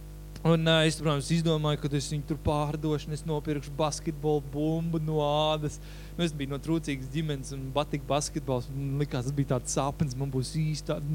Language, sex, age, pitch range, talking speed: Russian, male, 20-39, 145-165 Hz, 160 wpm